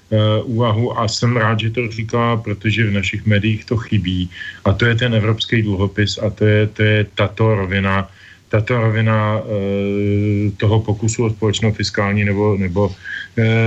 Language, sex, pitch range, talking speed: Slovak, male, 100-115 Hz, 155 wpm